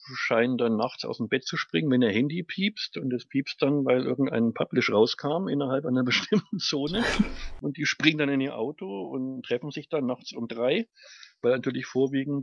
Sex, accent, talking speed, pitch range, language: male, German, 200 wpm, 125-170 Hz, German